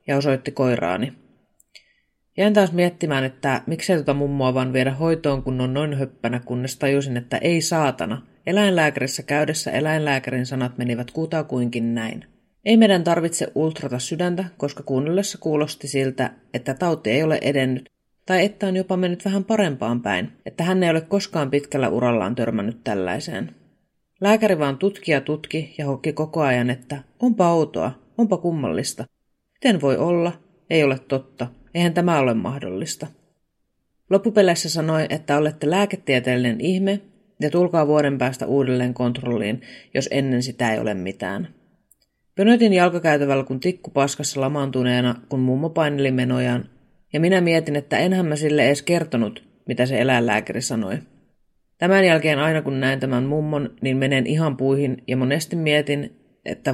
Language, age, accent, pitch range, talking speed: Finnish, 30-49, native, 130-170 Hz, 150 wpm